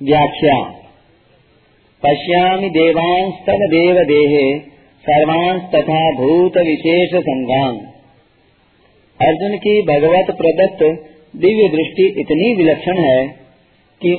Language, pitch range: Hindi, 145-185 Hz